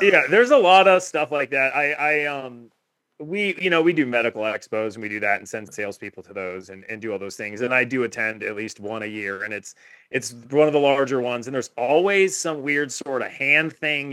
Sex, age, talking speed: male, 30-49, 250 wpm